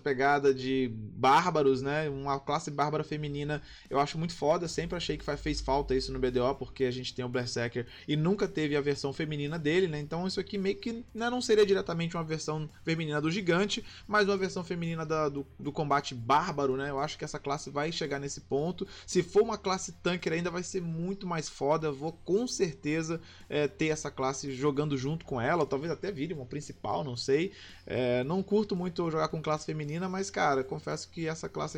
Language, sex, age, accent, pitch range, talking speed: Portuguese, male, 20-39, Brazilian, 140-175 Hz, 210 wpm